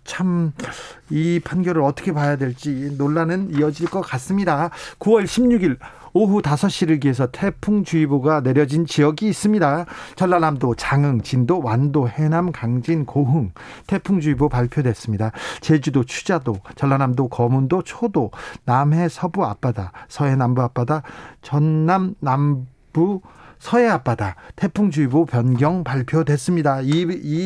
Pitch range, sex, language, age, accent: 140-180 Hz, male, Korean, 40-59, native